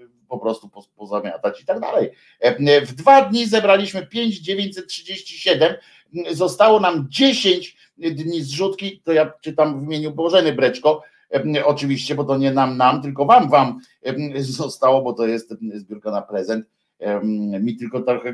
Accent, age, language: native, 50-69, Polish